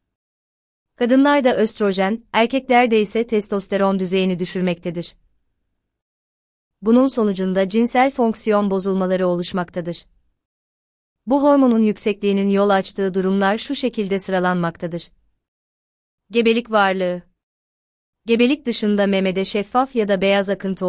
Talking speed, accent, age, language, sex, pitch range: 90 wpm, native, 30-49, Turkish, female, 170-220 Hz